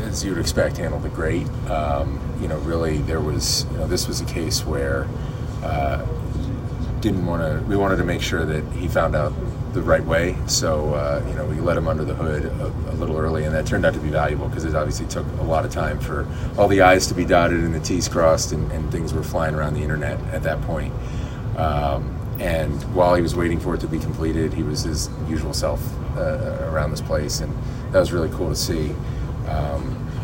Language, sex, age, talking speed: English, male, 30-49, 225 wpm